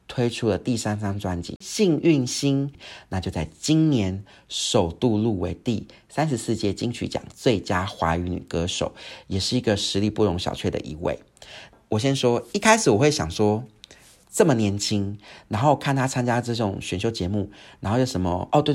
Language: Chinese